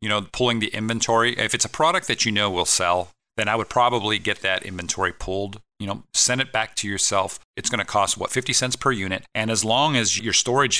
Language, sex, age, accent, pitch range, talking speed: English, male, 40-59, American, 90-115 Hz, 240 wpm